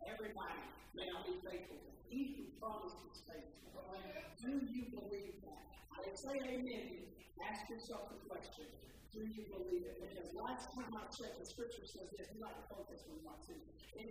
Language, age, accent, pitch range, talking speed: English, 50-69, American, 200-280 Hz, 175 wpm